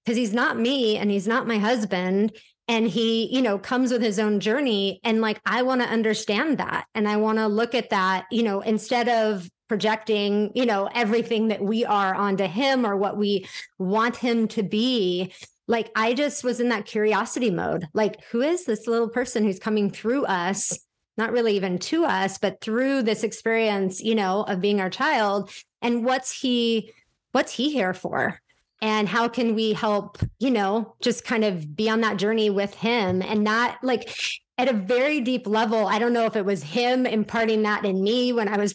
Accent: American